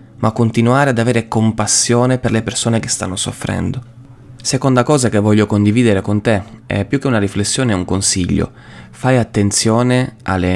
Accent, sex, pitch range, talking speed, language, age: native, male, 100-120 Hz, 165 wpm, Italian, 20-39